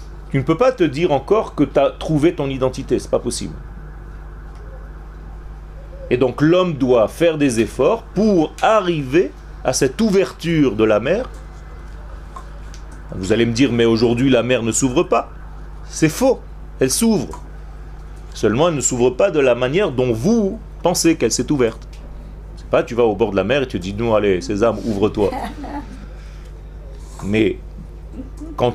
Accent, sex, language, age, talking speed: French, male, French, 40-59, 165 wpm